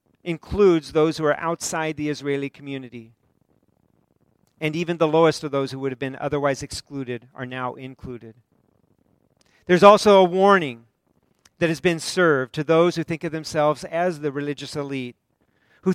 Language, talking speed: English, 160 wpm